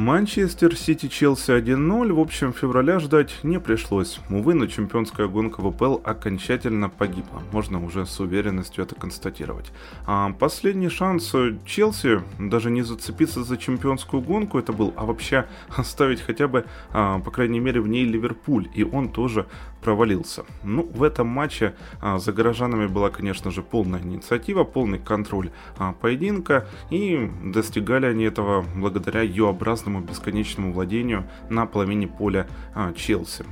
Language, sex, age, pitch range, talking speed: Ukrainian, male, 20-39, 100-130 Hz, 135 wpm